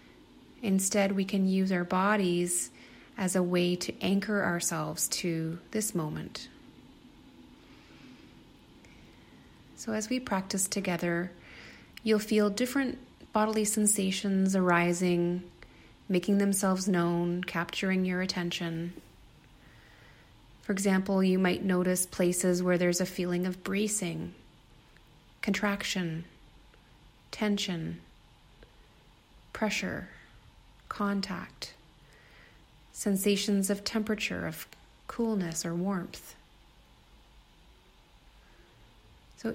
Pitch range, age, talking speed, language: 180-210 Hz, 30-49, 85 wpm, English